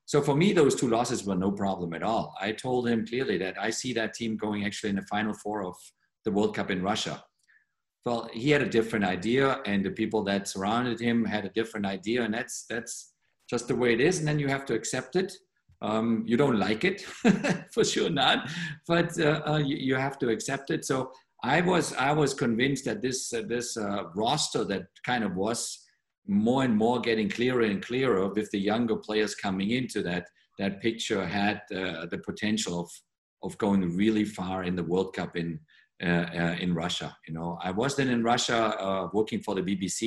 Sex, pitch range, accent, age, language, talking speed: male, 95-120 Hz, German, 50-69, English, 210 wpm